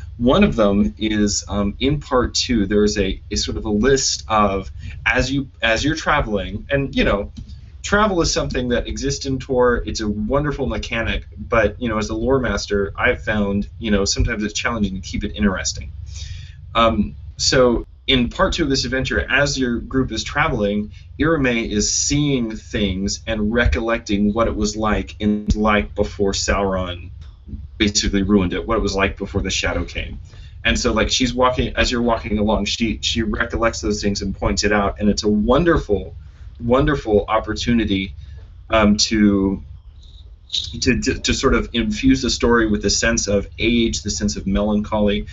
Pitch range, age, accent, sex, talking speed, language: 95-115 Hz, 30-49, American, male, 180 wpm, English